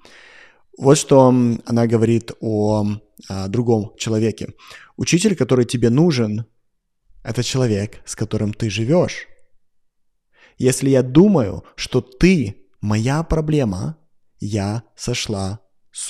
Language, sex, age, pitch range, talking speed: Russian, male, 30-49, 110-135 Hz, 110 wpm